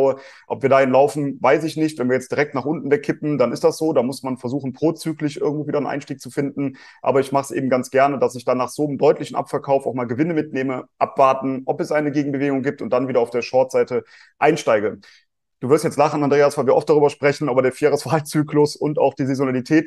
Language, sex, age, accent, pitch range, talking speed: German, male, 30-49, German, 130-150 Hz, 240 wpm